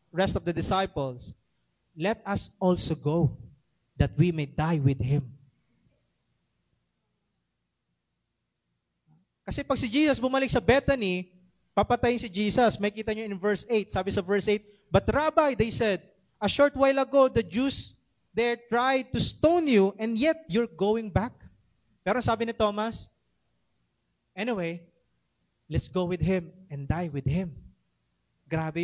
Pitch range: 150-230 Hz